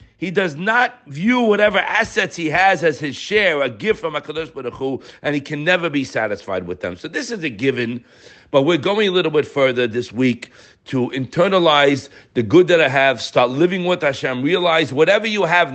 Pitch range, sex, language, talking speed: 150-215 Hz, male, English, 205 wpm